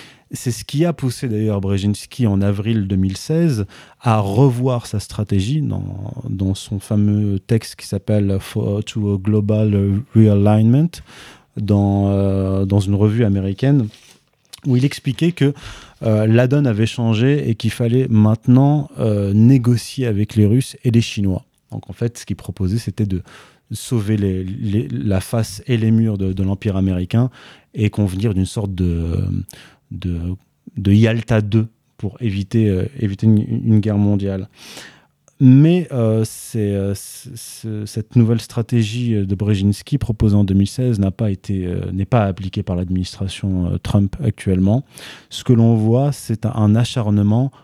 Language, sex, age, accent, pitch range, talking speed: French, male, 30-49, French, 100-120 Hz, 155 wpm